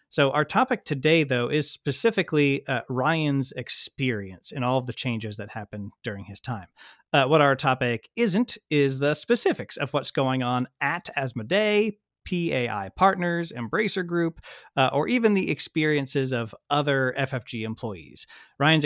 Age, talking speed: 30-49, 155 wpm